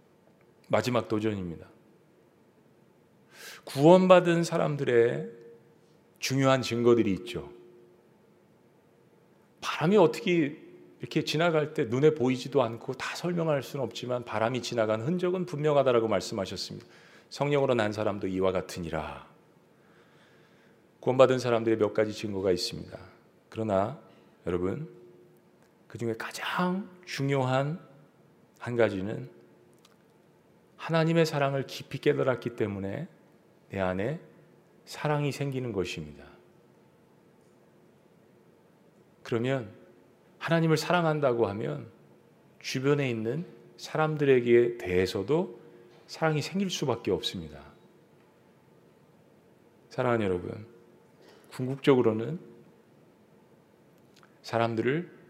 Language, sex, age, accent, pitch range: Korean, male, 40-59, native, 110-150 Hz